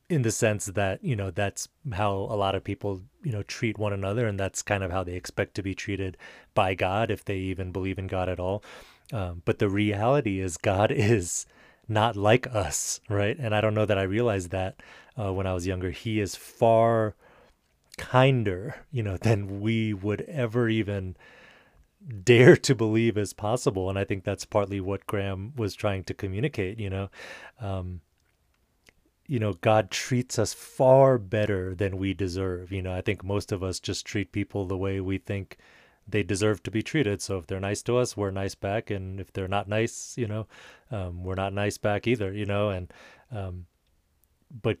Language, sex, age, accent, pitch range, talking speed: English, male, 30-49, American, 95-110 Hz, 195 wpm